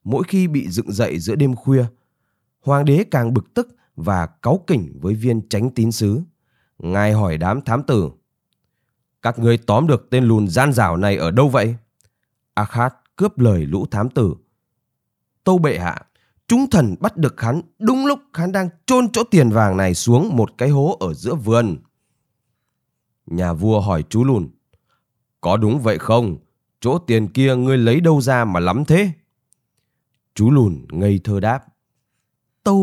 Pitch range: 110-165 Hz